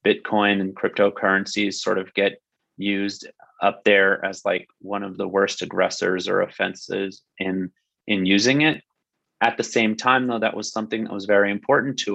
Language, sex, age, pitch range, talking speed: English, male, 30-49, 95-110 Hz, 175 wpm